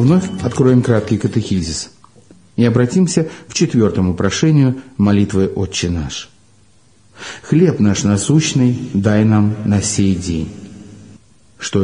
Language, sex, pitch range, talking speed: Russian, male, 105-145 Hz, 105 wpm